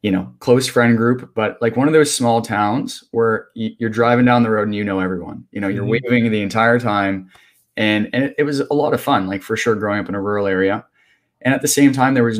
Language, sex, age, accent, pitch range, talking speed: English, male, 20-39, American, 100-120 Hz, 250 wpm